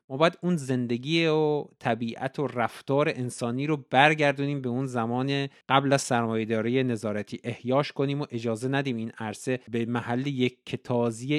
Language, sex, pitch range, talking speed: Persian, male, 120-145 Hz, 150 wpm